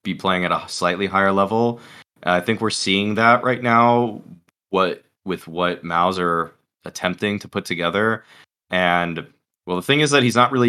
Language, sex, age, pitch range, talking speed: English, male, 20-39, 90-120 Hz, 175 wpm